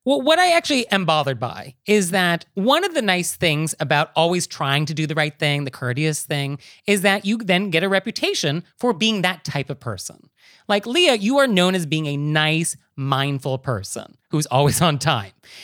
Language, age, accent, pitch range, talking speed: English, 30-49, American, 150-250 Hz, 205 wpm